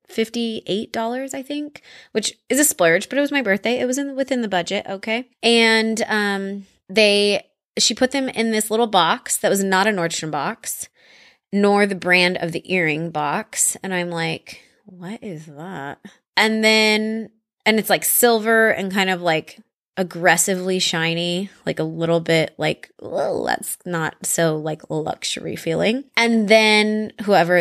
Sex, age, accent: female, 20-39, American